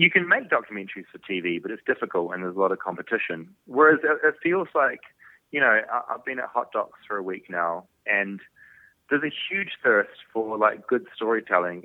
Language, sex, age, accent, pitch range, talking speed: English, male, 30-49, Australian, 90-110 Hz, 210 wpm